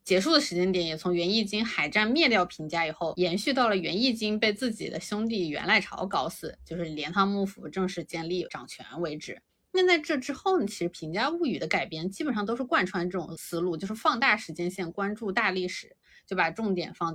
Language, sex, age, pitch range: Chinese, female, 20-39, 175-240 Hz